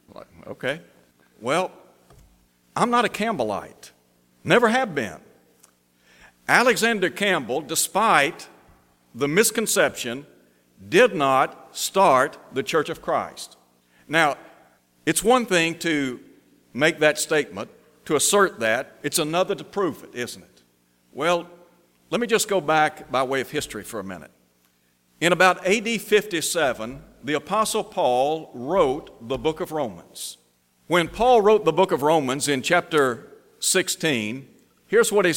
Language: English